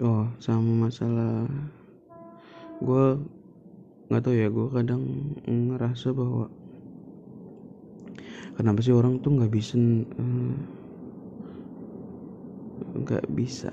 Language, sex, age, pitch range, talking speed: Indonesian, male, 20-39, 115-135 Hz, 85 wpm